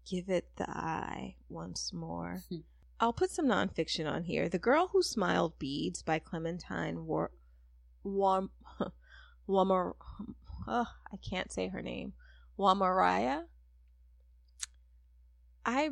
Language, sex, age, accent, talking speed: English, female, 20-39, American, 115 wpm